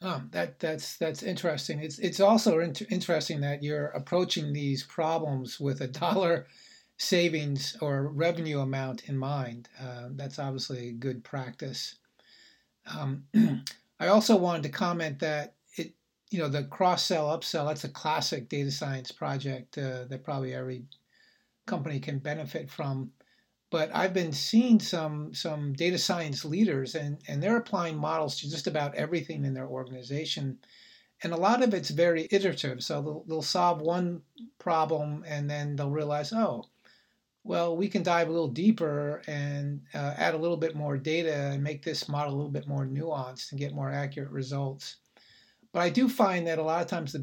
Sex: male